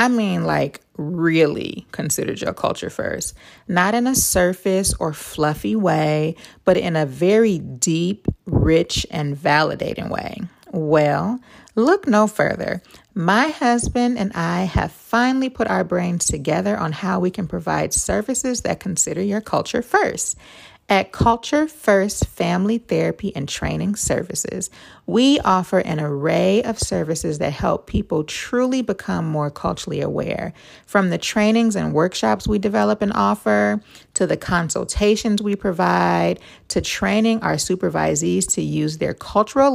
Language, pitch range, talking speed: English, 160-225 Hz, 140 wpm